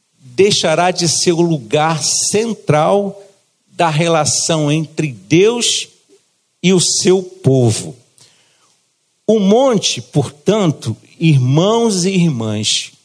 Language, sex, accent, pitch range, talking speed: Portuguese, male, Brazilian, 155-215 Hz, 90 wpm